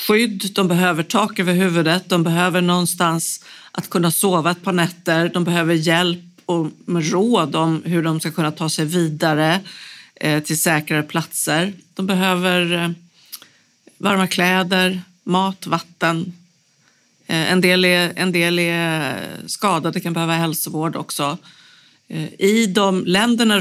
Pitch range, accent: 155-185 Hz, native